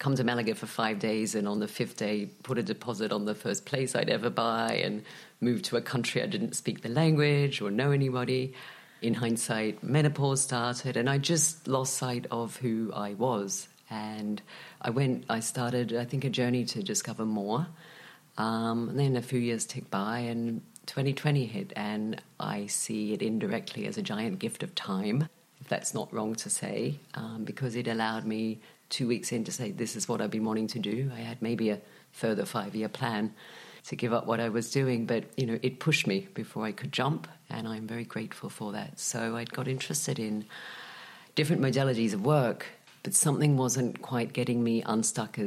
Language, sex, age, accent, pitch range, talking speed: English, female, 40-59, British, 110-140 Hz, 200 wpm